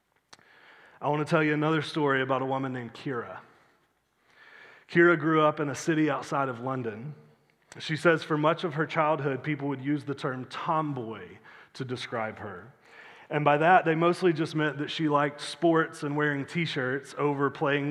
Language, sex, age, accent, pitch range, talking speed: English, male, 30-49, American, 130-160 Hz, 175 wpm